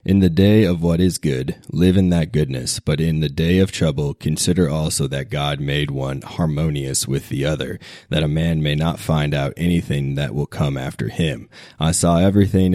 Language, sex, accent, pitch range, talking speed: English, male, American, 70-85 Hz, 200 wpm